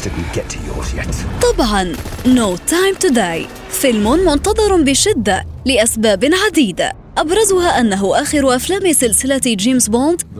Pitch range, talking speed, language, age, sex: 225-335 Hz, 85 wpm, Arabic, 20-39, female